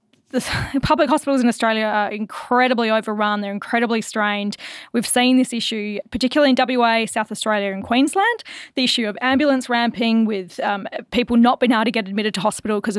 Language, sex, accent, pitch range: English, female, Australian, 205-250 Hz